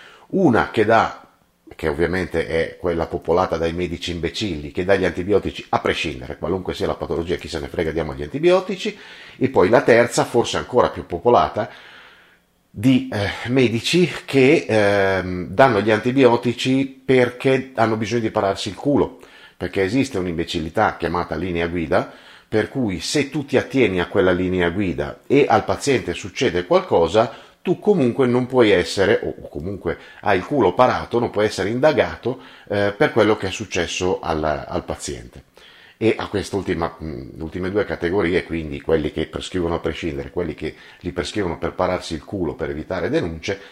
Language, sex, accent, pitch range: Italian, male, native, 80-110 Hz